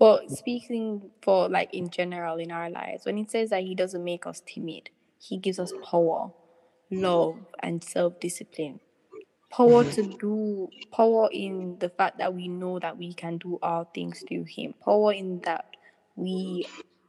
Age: 10-29